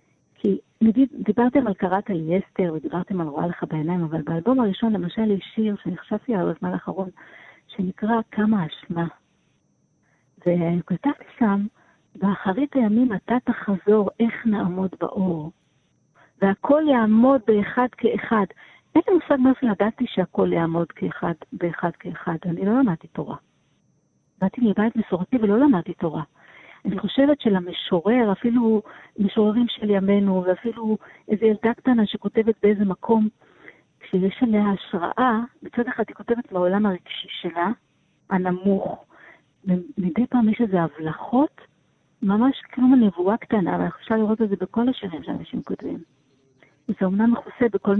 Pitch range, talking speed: 180-235 Hz, 125 wpm